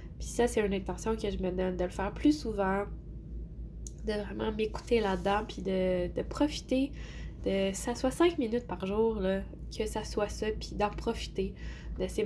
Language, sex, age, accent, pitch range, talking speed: French, female, 10-29, Canadian, 190-230 Hz, 195 wpm